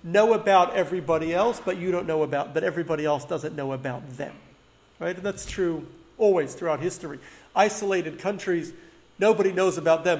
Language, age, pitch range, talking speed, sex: English, 40-59, 150-185 Hz, 165 wpm, male